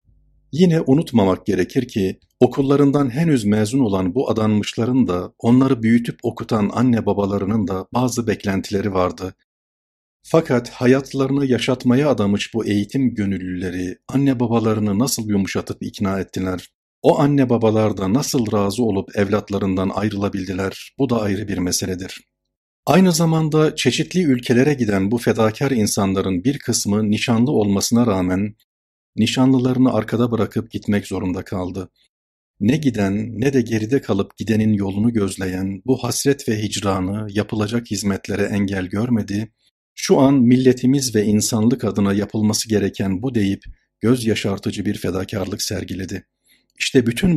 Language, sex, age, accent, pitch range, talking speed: Turkish, male, 50-69, native, 100-125 Hz, 125 wpm